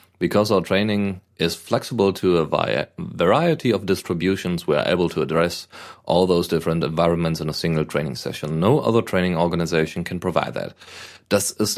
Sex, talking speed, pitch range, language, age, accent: male, 170 wpm, 85-115 Hz, German, 30-49, German